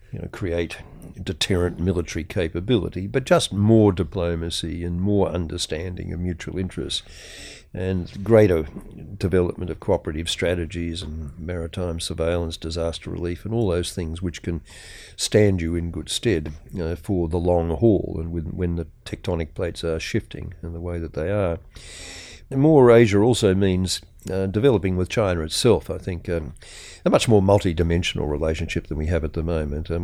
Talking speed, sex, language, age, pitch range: 155 wpm, male, English, 50-69, 85-95 Hz